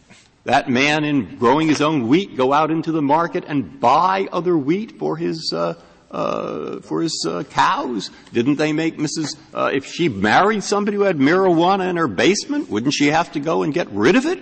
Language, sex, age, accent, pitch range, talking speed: English, male, 50-69, American, 135-205 Hz, 205 wpm